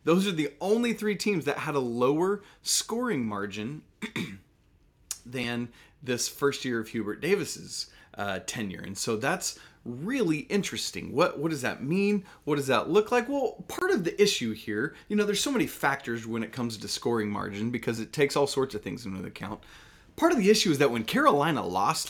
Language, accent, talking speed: English, American, 195 wpm